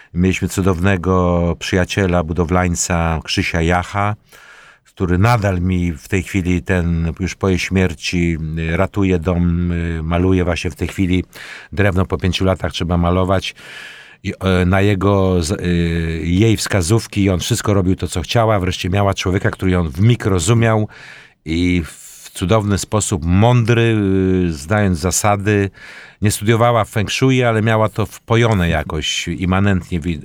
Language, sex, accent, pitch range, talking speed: Polish, male, native, 85-100 Hz, 130 wpm